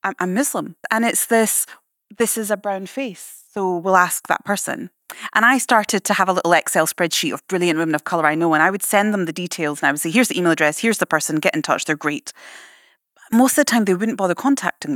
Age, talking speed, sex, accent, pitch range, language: 30-49, 250 wpm, female, British, 165-220 Hz, English